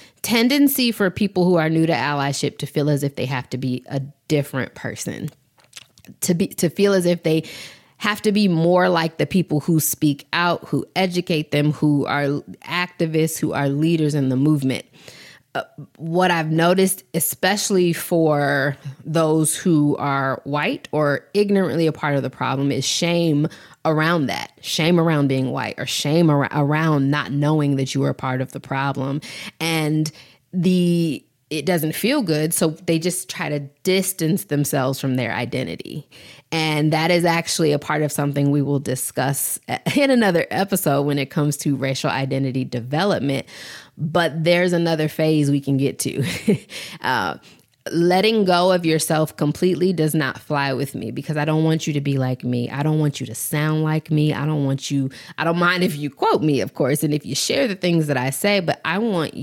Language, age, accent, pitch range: English, 20-39, American, 140-170 Hz